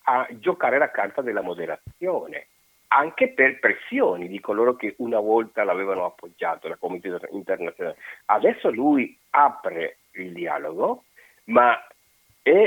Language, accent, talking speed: Italian, native, 125 wpm